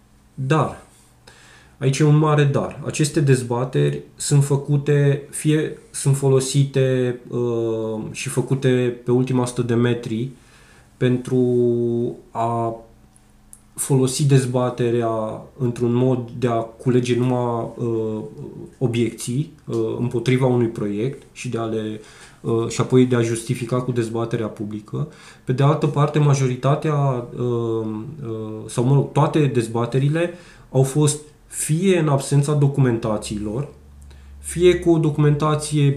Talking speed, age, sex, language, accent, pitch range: 115 wpm, 20-39, male, Romanian, native, 120-150 Hz